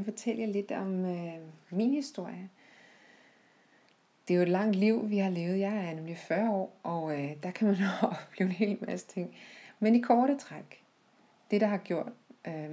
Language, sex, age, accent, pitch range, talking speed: Danish, female, 30-49, native, 160-215 Hz, 200 wpm